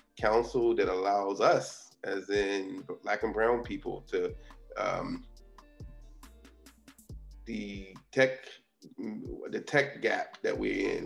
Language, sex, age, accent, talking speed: English, male, 20-39, American, 110 wpm